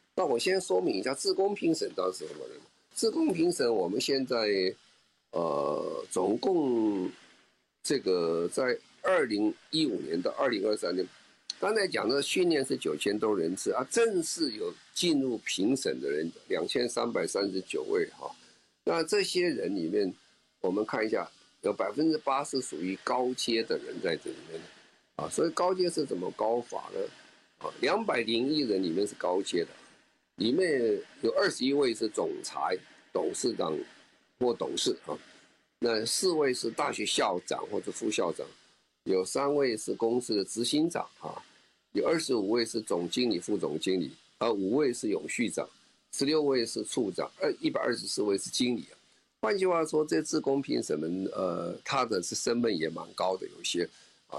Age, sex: 50-69, male